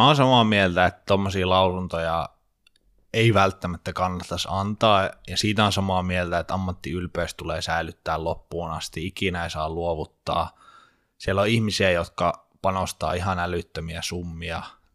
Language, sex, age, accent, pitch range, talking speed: Finnish, male, 20-39, native, 85-100 Hz, 135 wpm